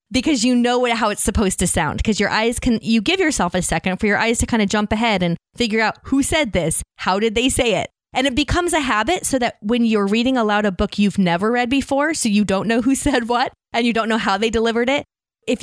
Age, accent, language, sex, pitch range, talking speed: 20-39, American, English, female, 185-245 Hz, 270 wpm